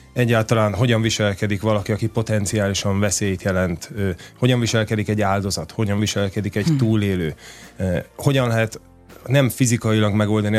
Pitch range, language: 95-110 Hz, Hungarian